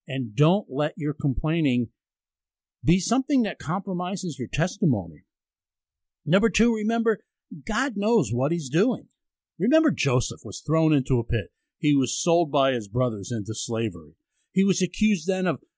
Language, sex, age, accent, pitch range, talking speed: English, male, 50-69, American, 120-185 Hz, 150 wpm